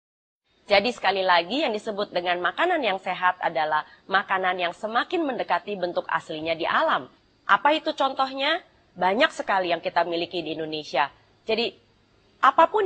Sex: female